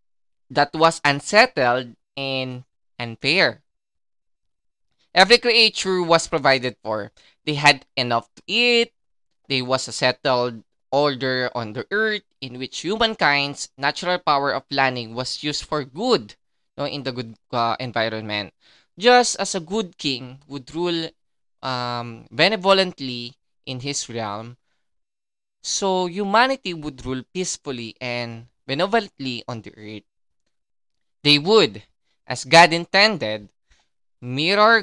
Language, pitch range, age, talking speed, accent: Filipino, 120-175 Hz, 20-39, 115 wpm, native